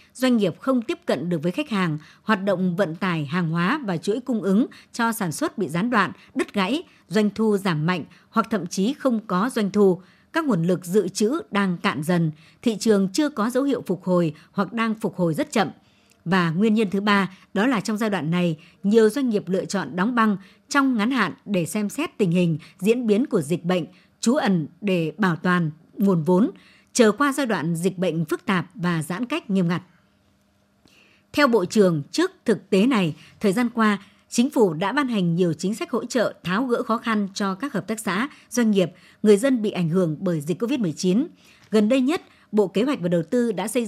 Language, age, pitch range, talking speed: Vietnamese, 60-79, 180-230 Hz, 220 wpm